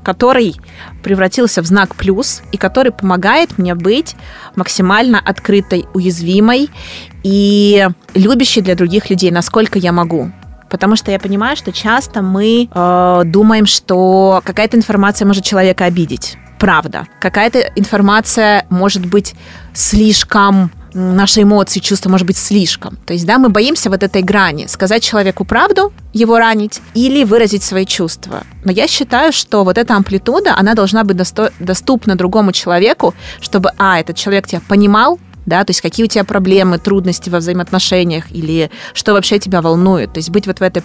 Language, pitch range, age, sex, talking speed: Russian, 180-210 Hz, 20-39, female, 155 wpm